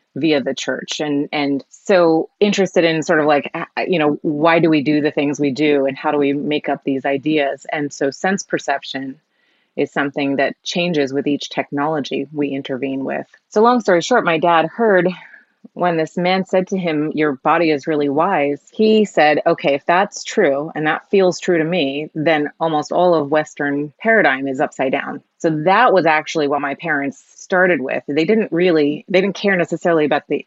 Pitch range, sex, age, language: 140-165 Hz, female, 30-49, English